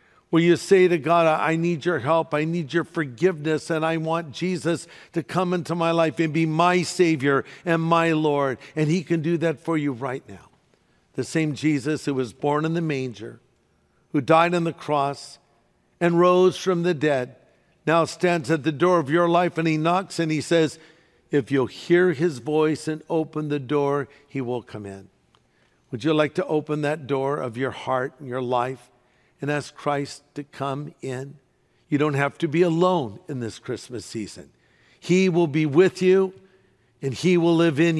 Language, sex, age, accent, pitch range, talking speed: English, male, 50-69, American, 135-170 Hz, 195 wpm